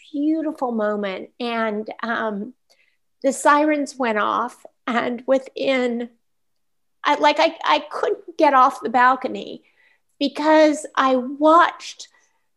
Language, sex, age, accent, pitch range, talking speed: English, female, 50-69, American, 195-270 Hz, 105 wpm